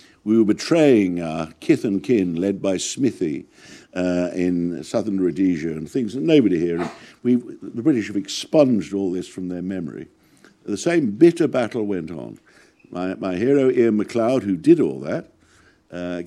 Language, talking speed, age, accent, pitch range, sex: English, 160 wpm, 60-79, British, 90-120 Hz, male